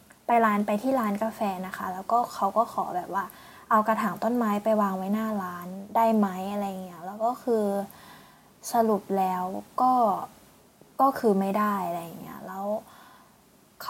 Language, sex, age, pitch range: Thai, female, 10-29, 190-230 Hz